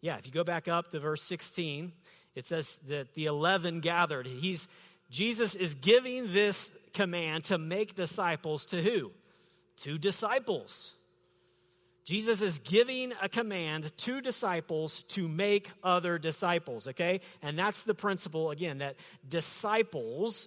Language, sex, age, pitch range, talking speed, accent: English, male, 40-59, 140-185 Hz, 135 wpm, American